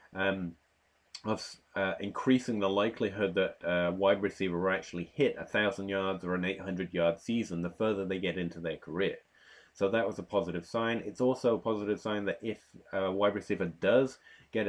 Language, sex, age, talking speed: English, male, 30-49, 190 wpm